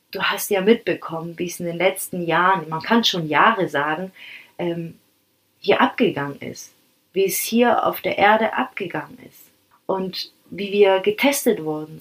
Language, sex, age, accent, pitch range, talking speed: German, female, 30-49, German, 195-235 Hz, 155 wpm